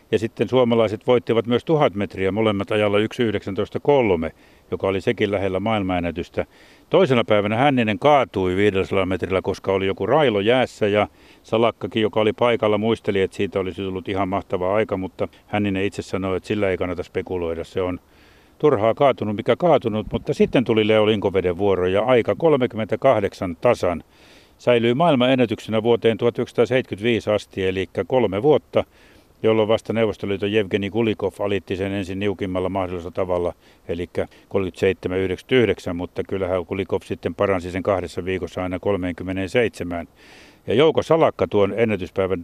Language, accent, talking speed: Finnish, native, 140 wpm